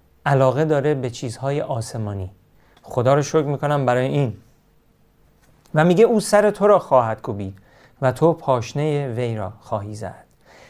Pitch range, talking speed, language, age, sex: 120-160 Hz, 145 wpm, Persian, 40-59, male